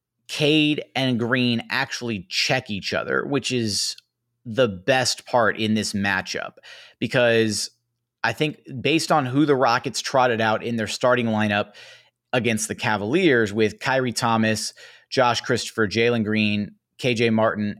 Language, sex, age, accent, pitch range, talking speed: English, male, 30-49, American, 110-135 Hz, 140 wpm